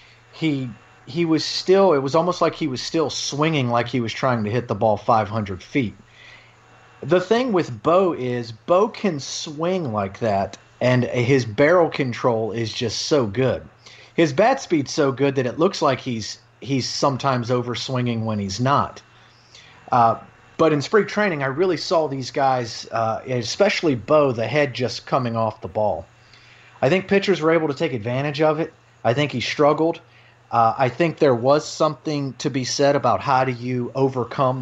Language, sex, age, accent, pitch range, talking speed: English, male, 30-49, American, 115-145 Hz, 180 wpm